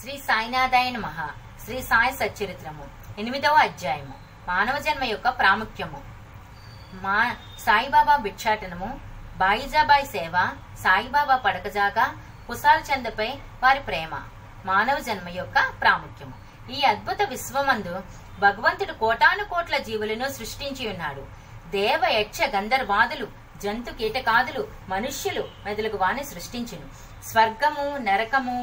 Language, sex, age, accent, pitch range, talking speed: Telugu, female, 30-49, native, 185-270 Hz, 75 wpm